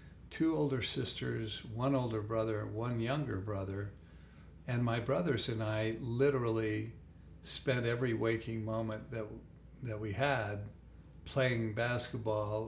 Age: 50-69